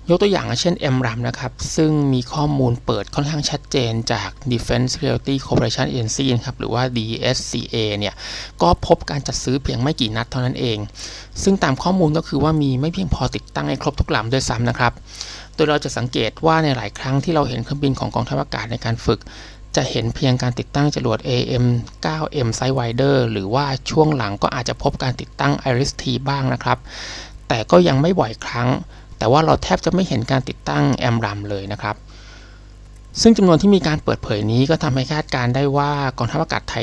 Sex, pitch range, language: male, 110-140 Hz, Thai